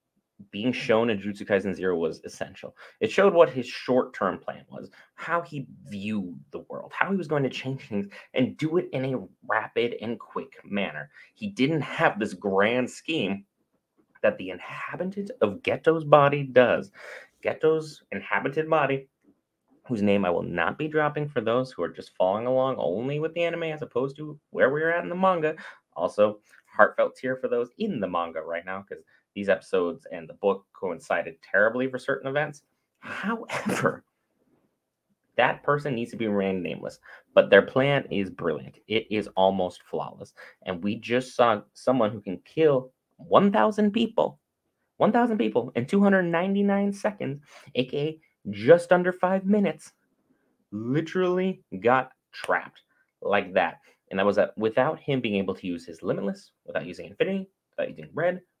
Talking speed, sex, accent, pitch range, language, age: 165 wpm, male, American, 105-165 Hz, English, 30-49